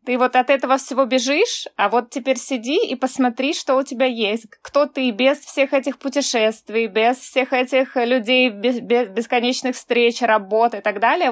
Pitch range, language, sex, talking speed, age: 230-270 Hz, Russian, female, 175 wpm, 20-39